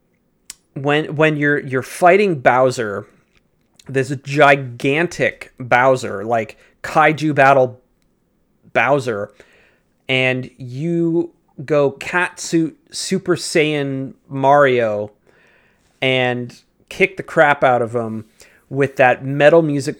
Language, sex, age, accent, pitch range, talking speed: English, male, 30-49, American, 125-150 Hz, 100 wpm